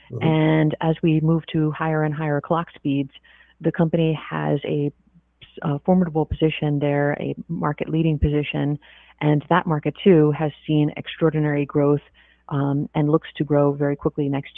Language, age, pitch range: English, 30-49, 145-165 Hz